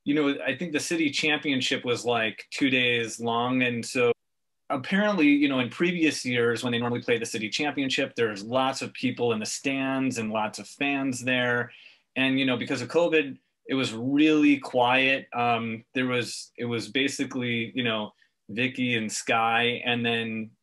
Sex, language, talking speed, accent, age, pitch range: male, English, 180 wpm, American, 30-49, 115-135 Hz